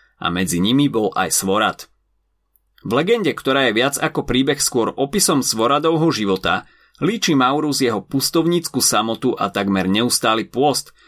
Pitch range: 100-160 Hz